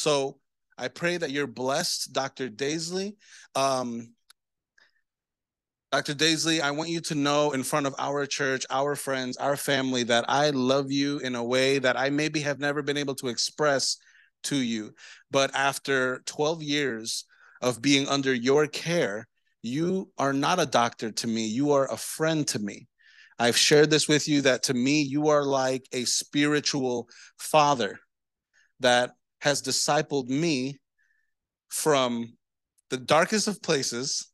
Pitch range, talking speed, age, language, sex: 125-150 Hz, 155 wpm, 30-49, English, male